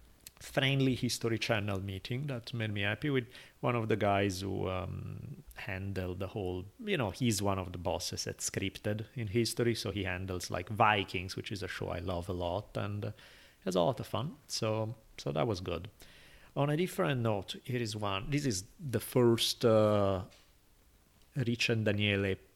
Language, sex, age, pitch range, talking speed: English, male, 30-49, 95-125 Hz, 180 wpm